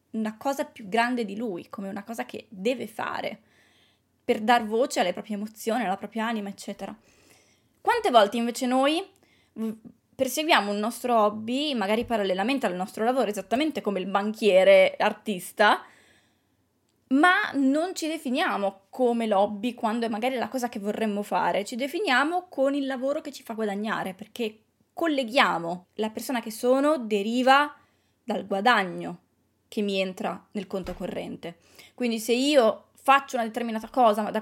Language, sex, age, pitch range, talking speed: Italian, female, 20-39, 205-260 Hz, 150 wpm